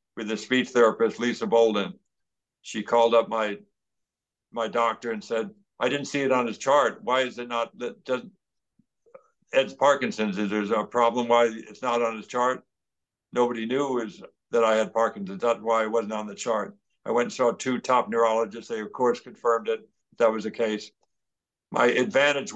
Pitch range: 115-130 Hz